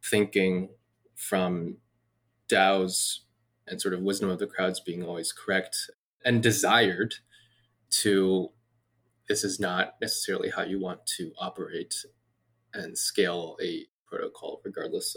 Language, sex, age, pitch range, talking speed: English, male, 20-39, 95-120 Hz, 120 wpm